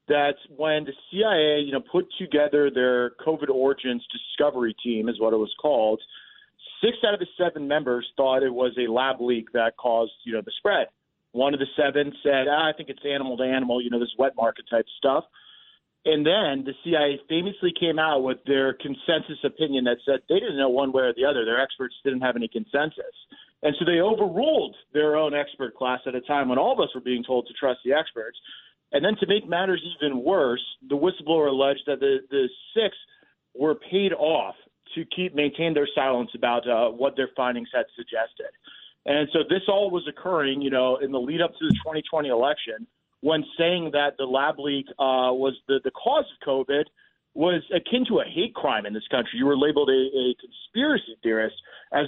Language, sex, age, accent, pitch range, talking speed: English, male, 40-59, American, 130-160 Hz, 205 wpm